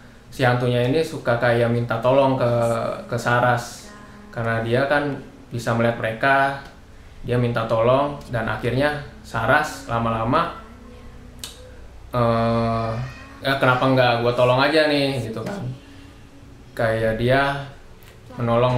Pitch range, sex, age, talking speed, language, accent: 115-130 Hz, male, 20-39, 110 wpm, Indonesian, native